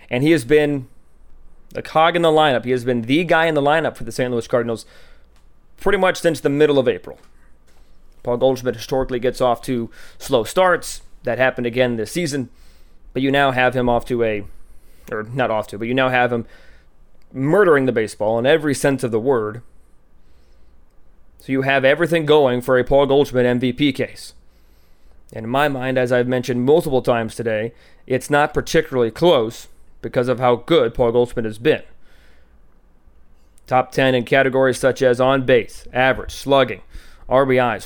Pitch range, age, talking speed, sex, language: 90-135 Hz, 30-49, 180 wpm, male, English